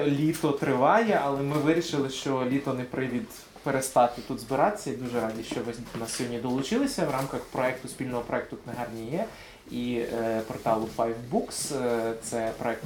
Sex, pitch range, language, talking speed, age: male, 120-180 Hz, Ukrainian, 160 wpm, 20-39